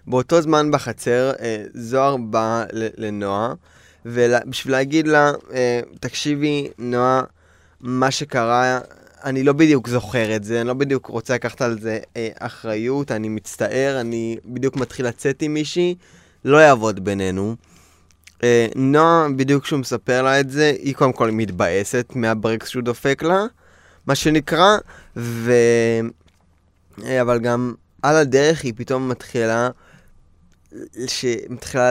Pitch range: 110-140 Hz